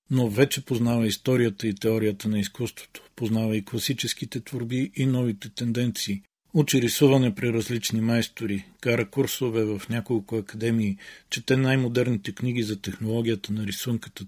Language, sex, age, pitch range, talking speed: Bulgarian, male, 50-69, 110-125 Hz, 135 wpm